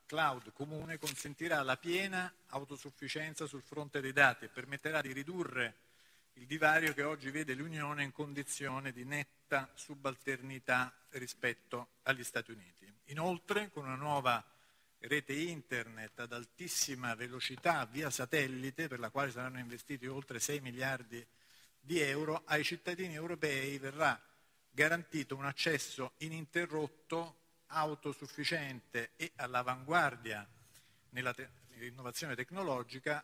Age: 50-69